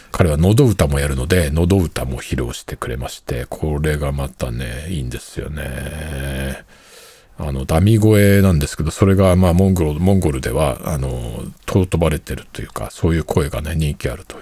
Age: 50-69